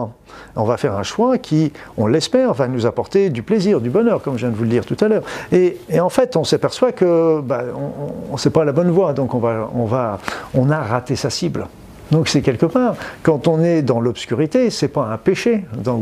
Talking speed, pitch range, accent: 240 wpm, 120-165 Hz, French